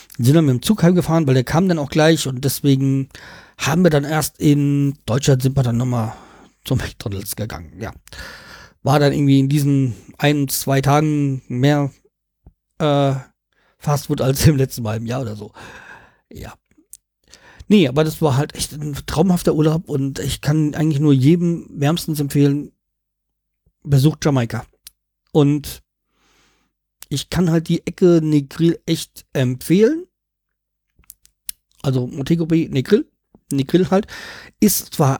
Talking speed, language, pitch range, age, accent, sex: 140 wpm, German, 135-170 Hz, 50-69, German, male